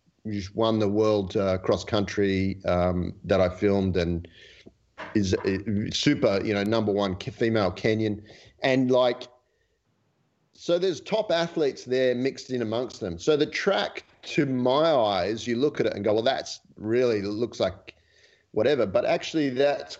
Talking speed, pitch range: 155 wpm, 100-130 Hz